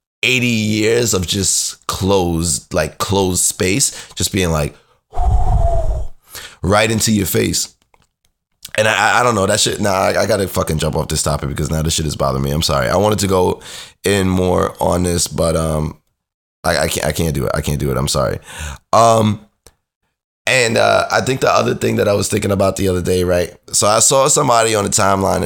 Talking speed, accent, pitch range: 205 wpm, American, 80-110 Hz